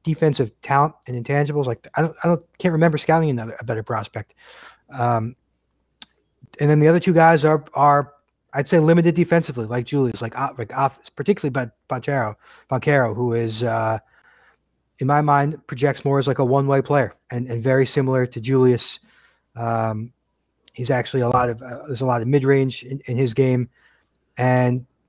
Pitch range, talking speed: 120-145 Hz, 170 wpm